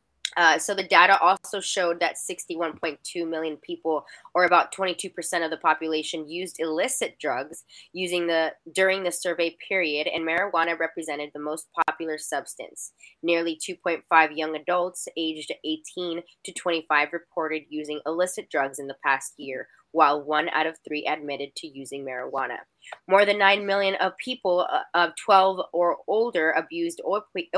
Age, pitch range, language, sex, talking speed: 20-39, 155-180 Hz, English, female, 150 wpm